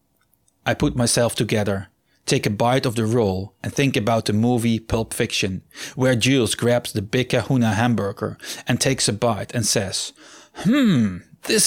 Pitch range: 115-140 Hz